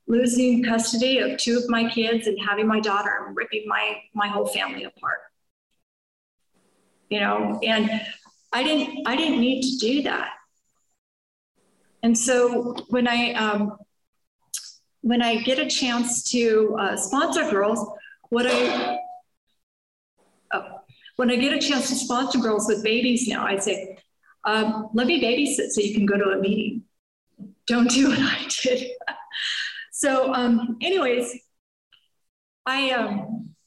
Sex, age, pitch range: female, 40-59, 210-245 Hz